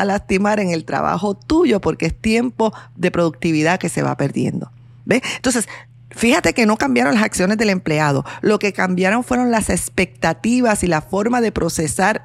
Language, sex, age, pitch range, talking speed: Spanish, female, 40-59, 145-215 Hz, 175 wpm